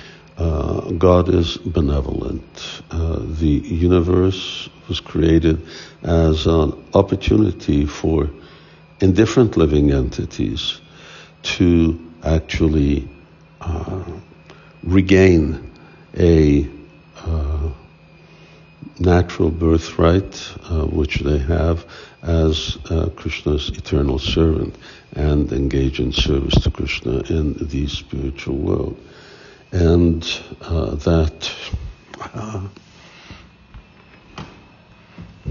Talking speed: 80 wpm